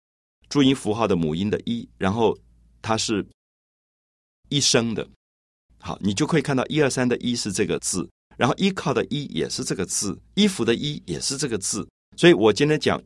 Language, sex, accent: Chinese, male, native